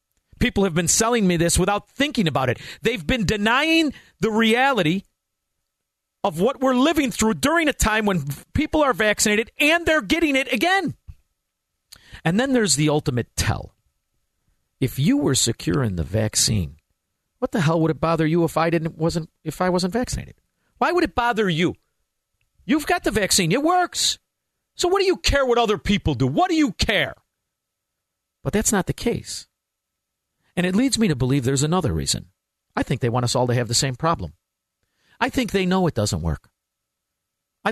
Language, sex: English, male